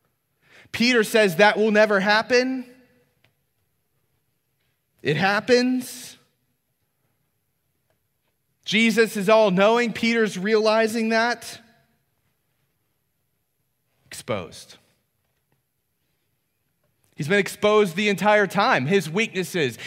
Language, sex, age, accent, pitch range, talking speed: English, male, 30-49, American, 130-200 Hz, 70 wpm